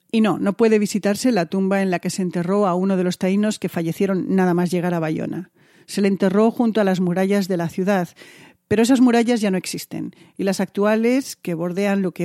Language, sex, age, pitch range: Spanish, female, 40-59, 175-215 Hz